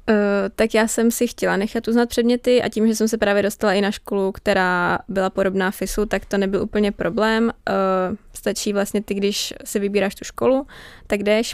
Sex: female